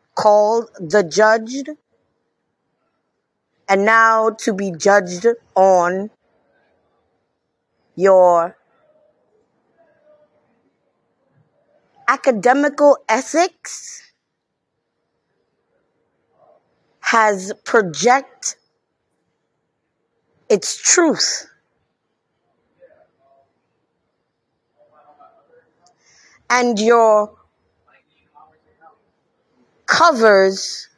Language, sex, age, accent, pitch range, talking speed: English, female, 30-49, American, 200-295 Hz, 35 wpm